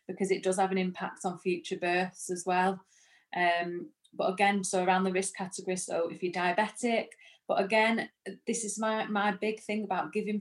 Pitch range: 175-200 Hz